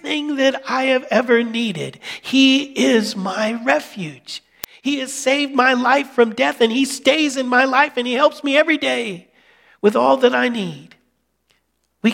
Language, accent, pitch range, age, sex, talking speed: English, American, 205-265 Hz, 50-69, male, 170 wpm